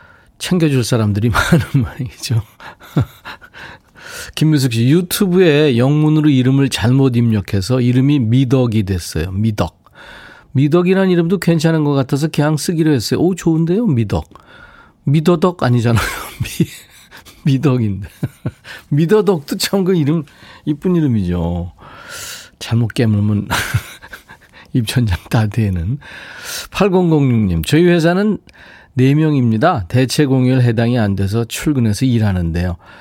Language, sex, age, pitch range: Korean, male, 40-59, 105-150 Hz